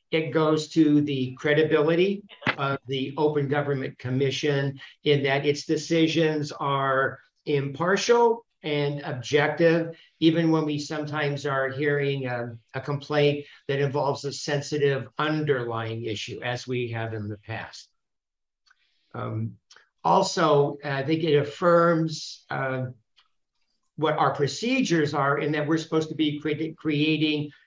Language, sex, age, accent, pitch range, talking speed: English, male, 50-69, American, 135-155 Hz, 125 wpm